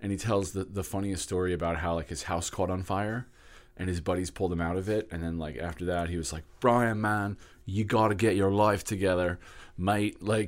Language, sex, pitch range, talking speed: English, male, 85-105 Hz, 240 wpm